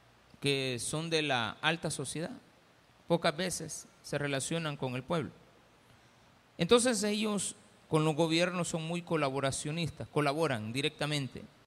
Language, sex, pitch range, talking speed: Spanish, male, 140-175 Hz, 120 wpm